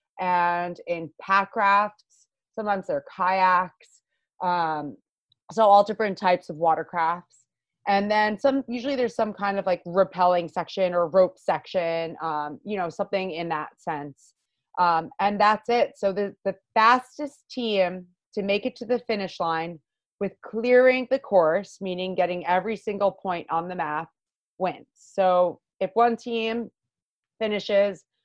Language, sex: English, female